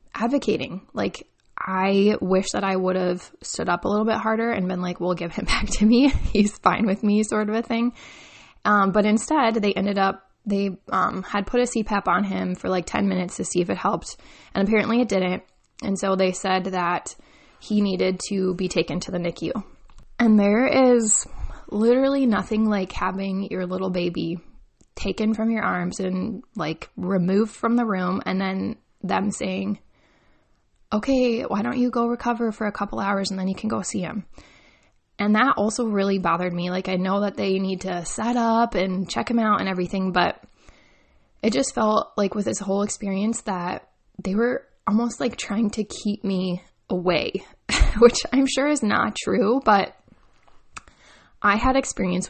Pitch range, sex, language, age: 185-225 Hz, female, English, 20-39